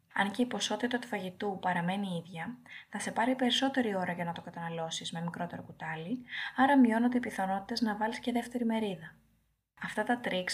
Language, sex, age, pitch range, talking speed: Greek, female, 20-39, 185-245 Hz, 180 wpm